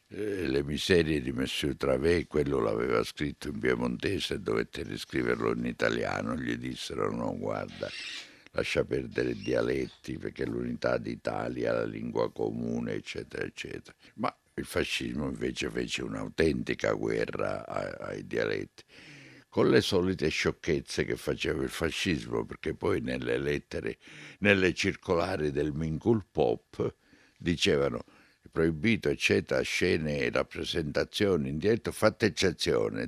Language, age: Italian, 60-79